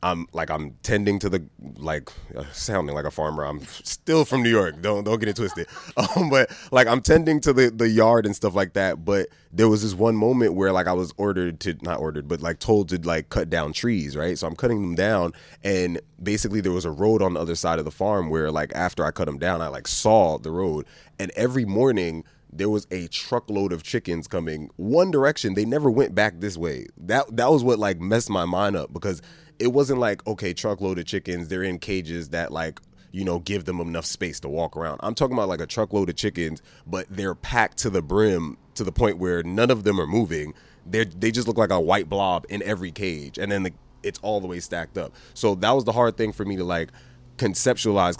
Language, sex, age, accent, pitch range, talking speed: English, male, 20-39, American, 85-110 Hz, 240 wpm